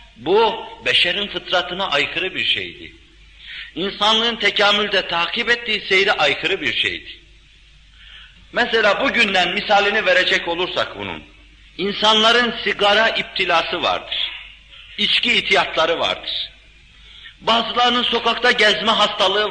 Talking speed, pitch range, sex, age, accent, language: 95 wpm, 185-220 Hz, male, 50-69, native, Turkish